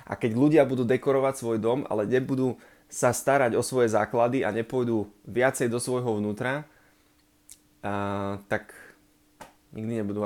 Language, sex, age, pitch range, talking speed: Slovak, male, 20-39, 110-130 Hz, 140 wpm